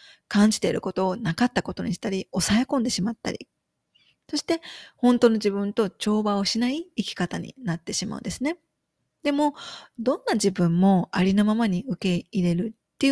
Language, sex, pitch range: Japanese, female, 200-280 Hz